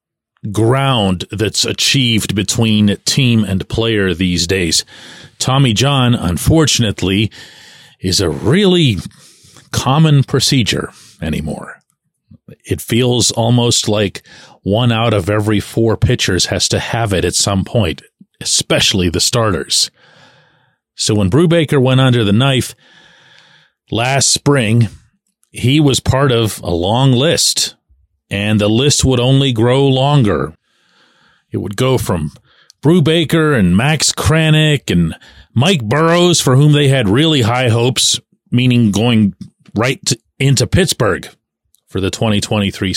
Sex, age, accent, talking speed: male, 40-59, American, 125 wpm